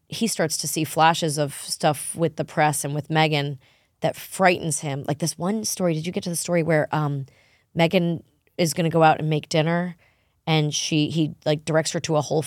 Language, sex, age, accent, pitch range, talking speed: English, female, 20-39, American, 150-170 Hz, 220 wpm